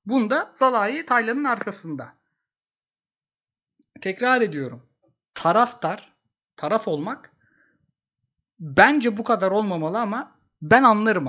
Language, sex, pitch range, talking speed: Turkish, male, 170-245 Hz, 85 wpm